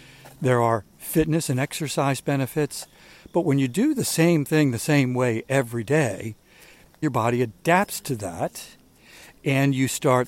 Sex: male